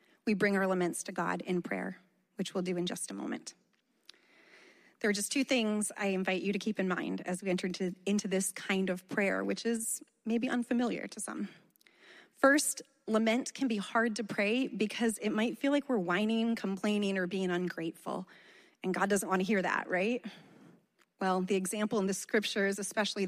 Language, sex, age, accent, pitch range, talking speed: English, female, 30-49, American, 185-220 Hz, 190 wpm